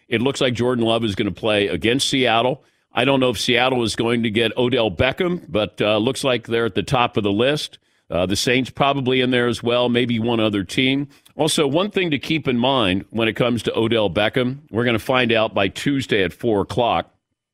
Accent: American